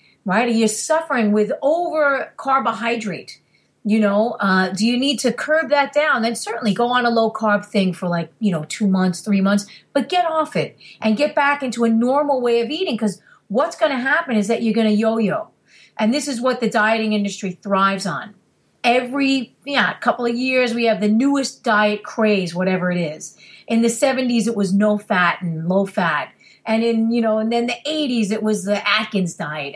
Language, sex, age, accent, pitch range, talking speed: English, female, 40-59, American, 205-265 Hz, 210 wpm